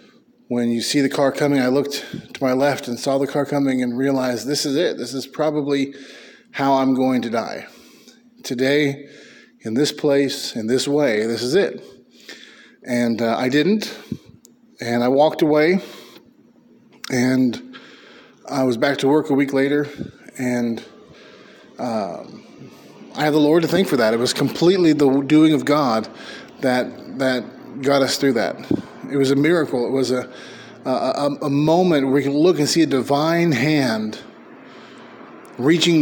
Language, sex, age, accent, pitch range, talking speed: English, male, 30-49, American, 130-155 Hz, 165 wpm